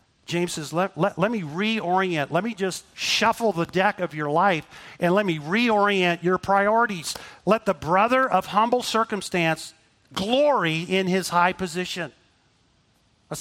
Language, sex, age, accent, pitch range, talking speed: English, male, 40-59, American, 160-225 Hz, 150 wpm